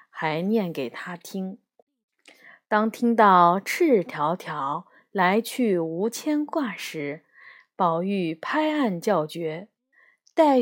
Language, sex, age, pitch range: Chinese, female, 20-39, 185-275 Hz